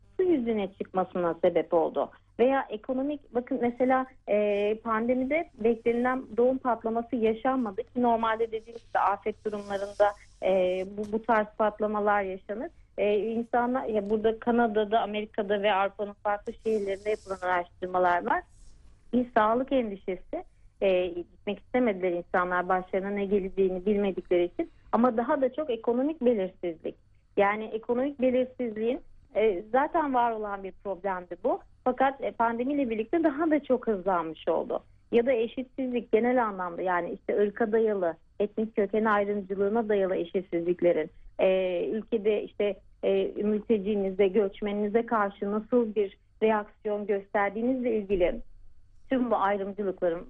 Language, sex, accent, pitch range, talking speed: Turkish, female, native, 195-240 Hz, 125 wpm